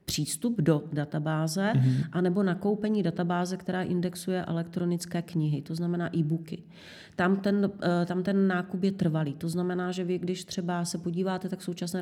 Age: 30-49